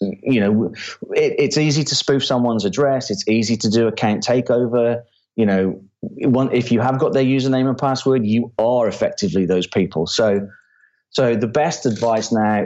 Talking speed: 165 wpm